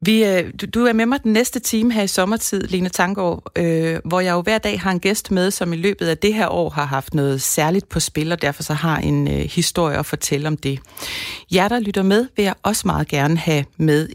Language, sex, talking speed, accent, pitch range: Danish, female, 250 wpm, native, 150-190 Hz